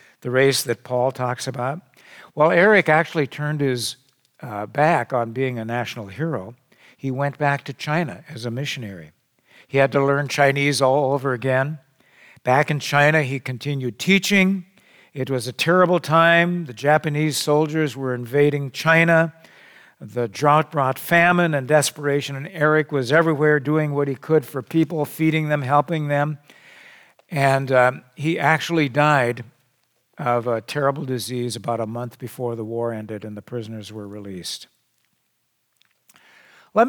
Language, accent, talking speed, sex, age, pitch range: English, American, 150 wpm, male, 60-79, 125-160 Hz